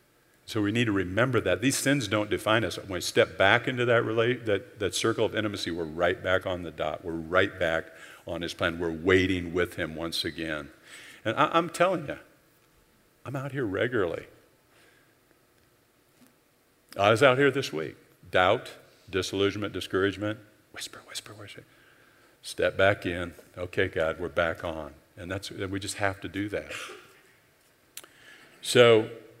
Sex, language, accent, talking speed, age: male, English, American, 160 wpm, 50-69